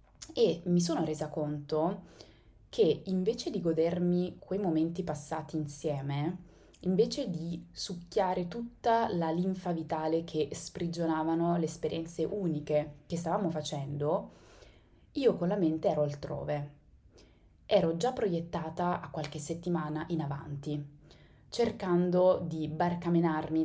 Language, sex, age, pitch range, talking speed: Italian, female, 20-39, 150-185 Hz, 115 wpm